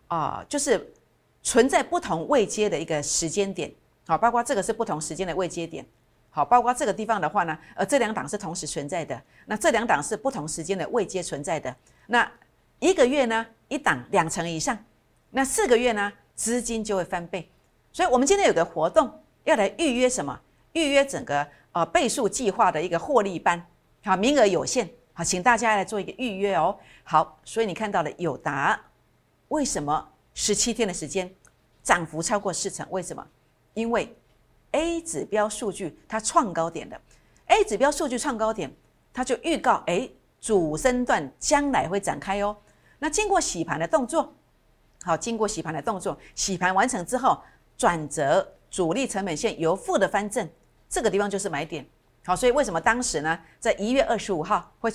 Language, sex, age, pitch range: Chinese, female, 50-69, 170-250 Hz